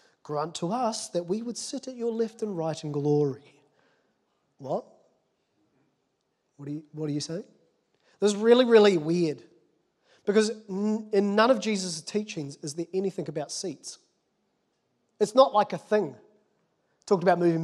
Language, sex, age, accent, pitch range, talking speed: English, male, 30-49, Australian, 155-210 Hz, 150 wpm